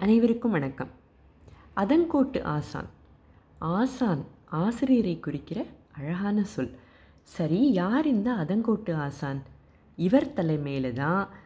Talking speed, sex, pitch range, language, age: 85 wpm, female, 135-205 Hz, Tamil, 30-49